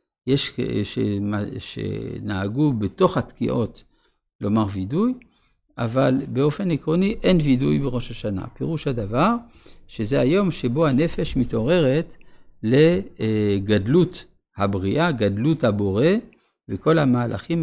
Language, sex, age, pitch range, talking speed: Hebrew, male, 50-69, 110-155 Hz, 90 wpm